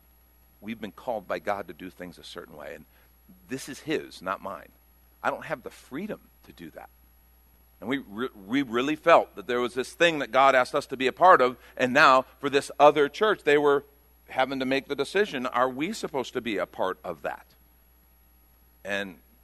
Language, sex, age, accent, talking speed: English, male, 50-69, American, 210 wpm